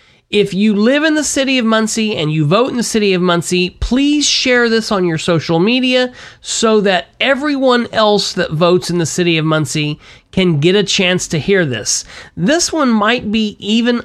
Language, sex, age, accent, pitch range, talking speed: English, male, 30-49, American, 175-235 Hz, 195 wpm